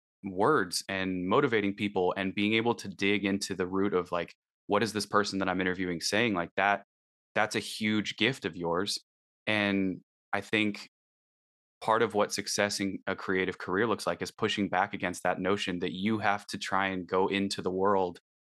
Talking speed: 190 wpm